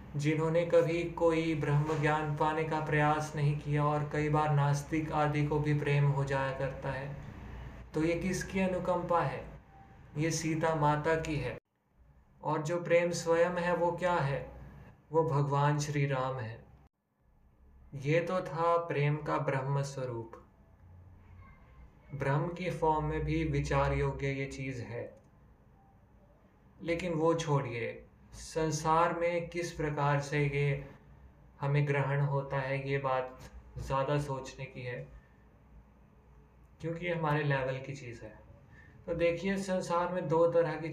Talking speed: 140 wpm